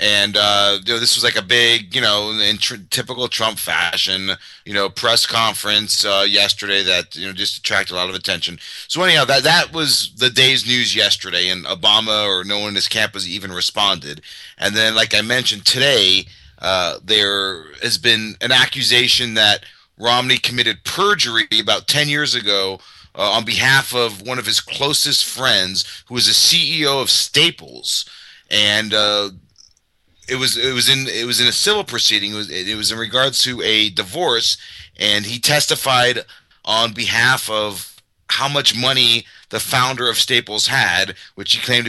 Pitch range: 100-125 Hz